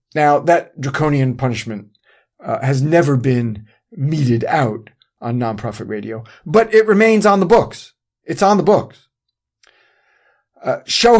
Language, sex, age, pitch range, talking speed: English, male, 40-59, 130-180 Hz, 135 wpm